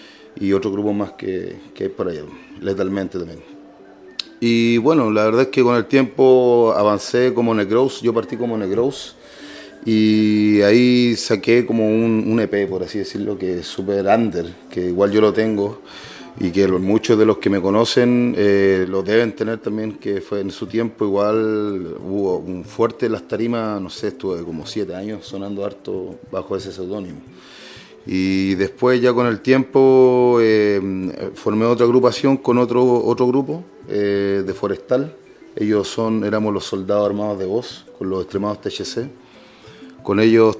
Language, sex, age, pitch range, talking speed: Spanish, male, 30-49, 100-115 Hz, 165 wpm